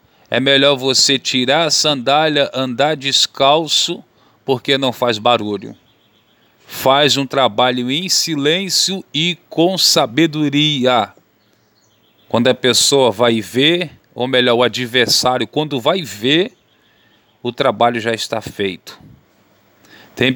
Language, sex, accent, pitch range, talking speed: Portuguese, male, Brazilian, 120-145 Hz, 110 wpm